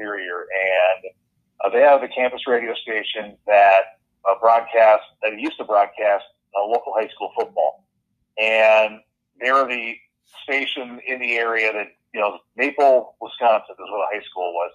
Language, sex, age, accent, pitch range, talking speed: English, male, 50-69, American, 105-125 Hz, 155 wpm